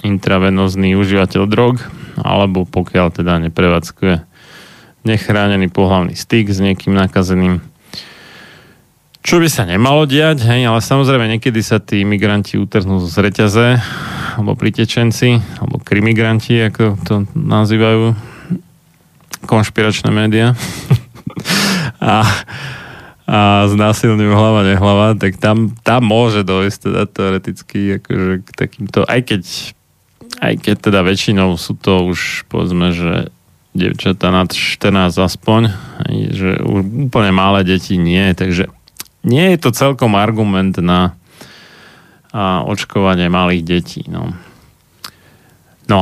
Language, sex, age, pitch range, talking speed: Slovak, male, 20-39, 95-115 Hz, 110 wpm